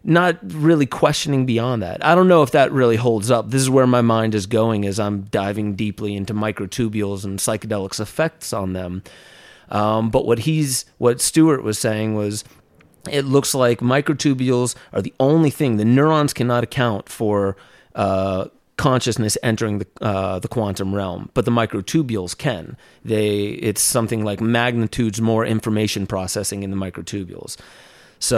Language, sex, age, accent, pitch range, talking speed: English, male, 30-49, American, 105-135 Hz, 165 wpm